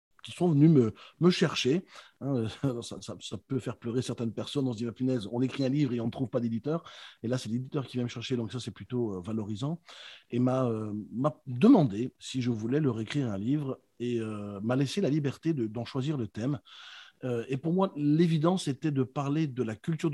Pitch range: 125-175 Hz